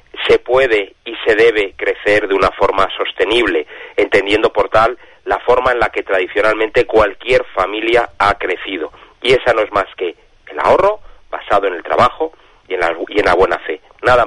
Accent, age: Spanish, 30-49